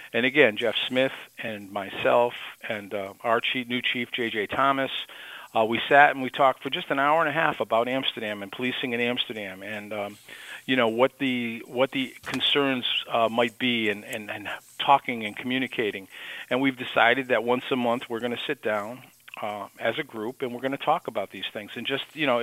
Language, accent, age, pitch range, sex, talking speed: English, American, 50-69, 115-140 Hz, male, 210 wpm